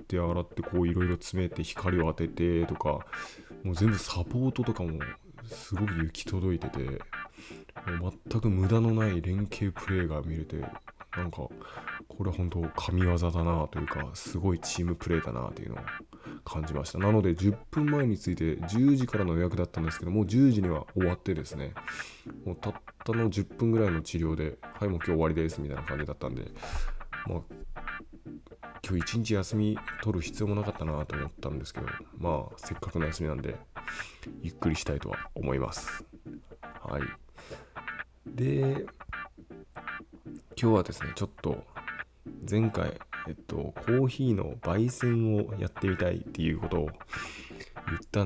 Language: Japanese